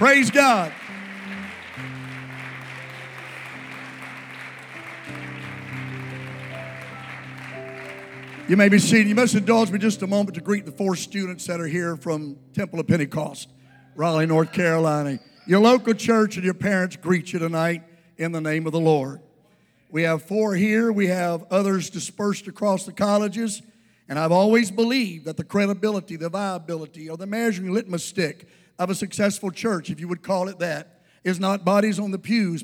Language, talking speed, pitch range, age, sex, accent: English, 155 wpm, 165-220 Hz, 50-69, male, American